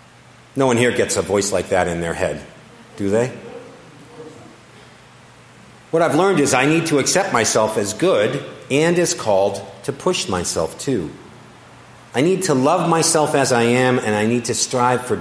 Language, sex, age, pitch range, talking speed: English, male, 50-69, 110-145 Hz, 180 wpm